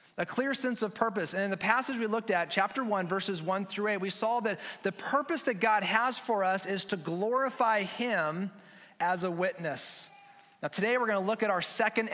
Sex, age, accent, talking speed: male, 30-49, American, 215 wpm